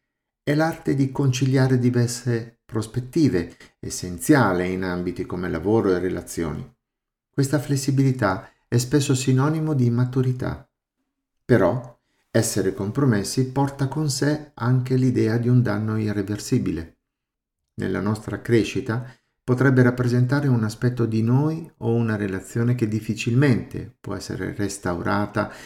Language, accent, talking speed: Italian, native, 115 wpm